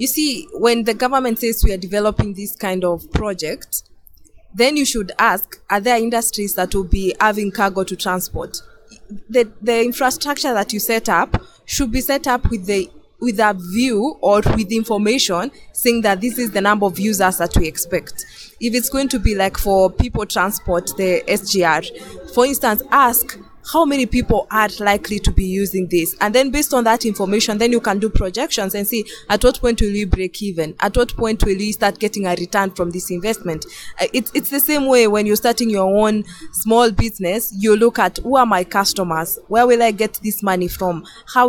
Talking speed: 200 wpm